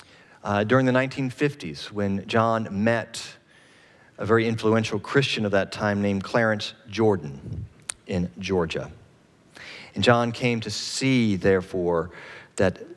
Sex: male